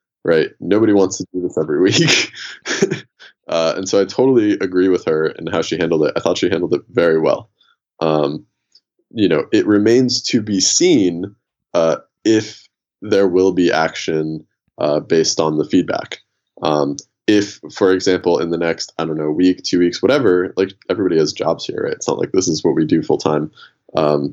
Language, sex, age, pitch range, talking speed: Dutch, male, 20-39, 80-105 Hz, 190 wpm